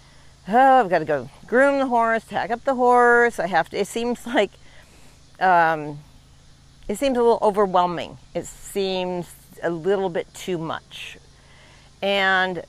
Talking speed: 150 wpm